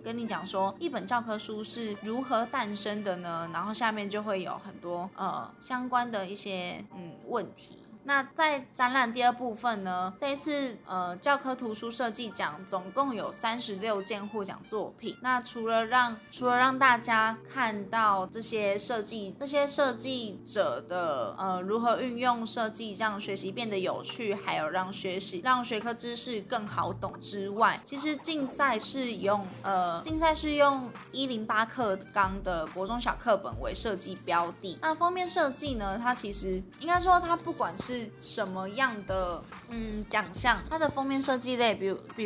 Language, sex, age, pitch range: Chinese, female, 20-39, 195-255 Hz